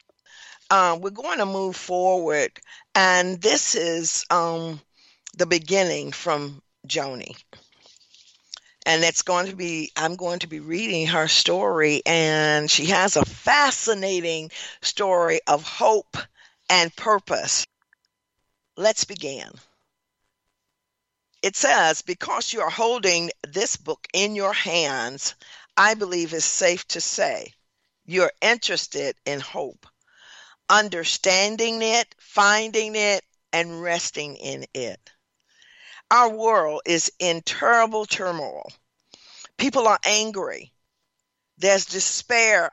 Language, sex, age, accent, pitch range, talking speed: English, female, 50-69, American, 165-215 Hz, 110 wpm